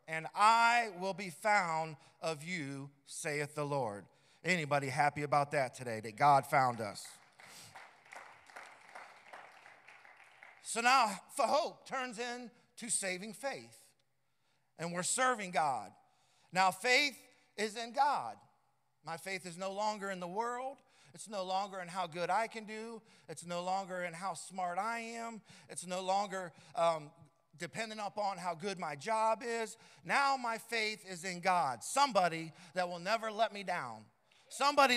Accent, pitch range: American, 160-230 Hz